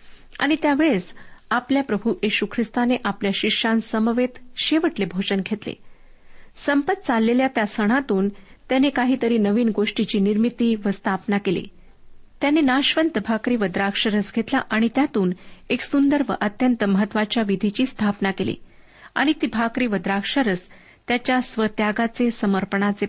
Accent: native